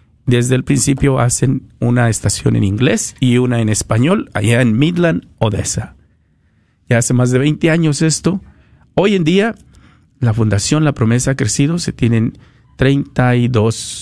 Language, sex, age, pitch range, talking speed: Spanish, male, 50-69, 110-140 Hz, 150 wpm